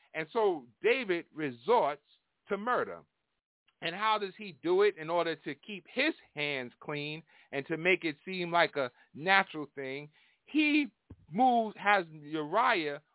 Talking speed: 145 wpm